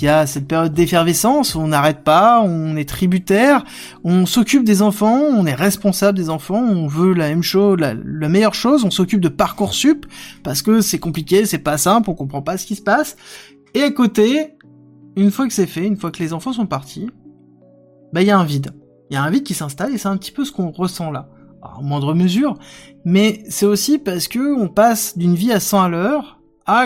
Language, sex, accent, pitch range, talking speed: French, male, French, 160-230 Hz, 230 wpm